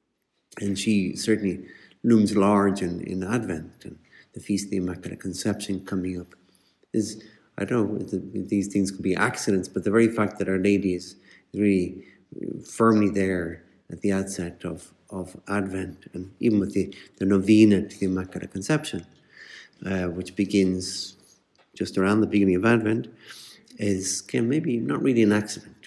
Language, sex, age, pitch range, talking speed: English, male, 60-79, 95-110 Hz, 165 wpm